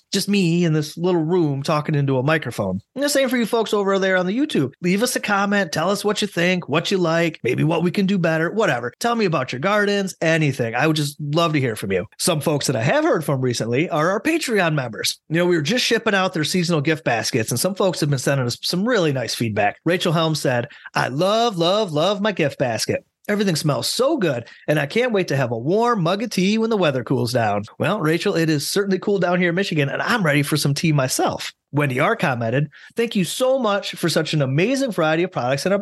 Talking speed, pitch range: 255 wpm, 145-200 Hz